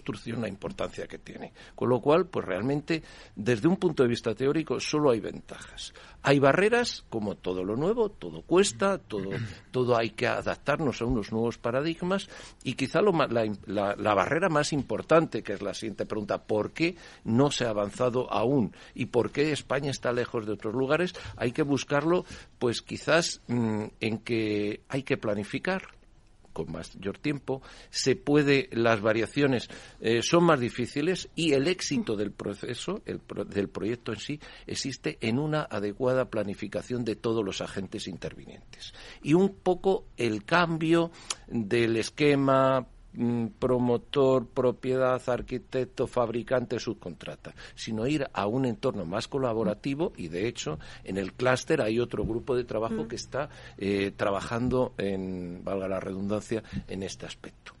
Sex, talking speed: male, 155 wpm